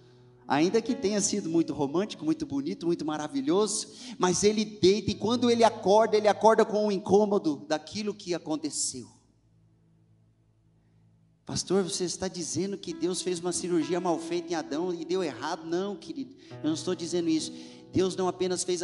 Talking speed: 165 wpm